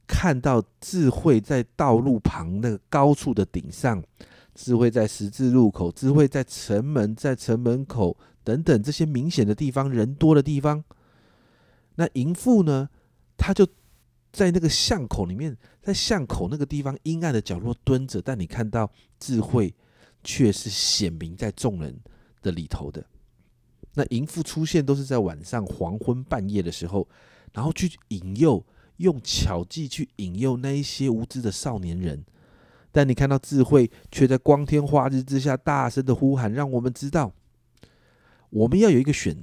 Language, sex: Chinese, male